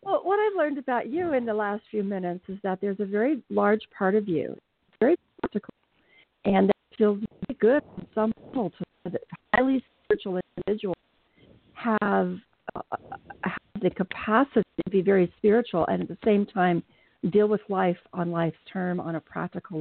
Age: 50-69